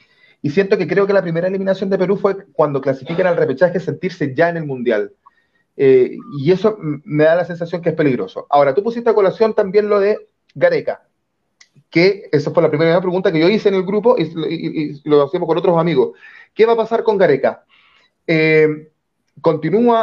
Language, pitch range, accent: Spanish, 165-225 Hz, Venezuelan